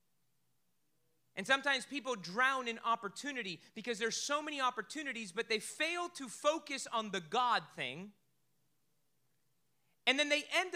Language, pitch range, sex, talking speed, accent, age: English, 185-250 Hz, male, 135 wpm, American, 30-49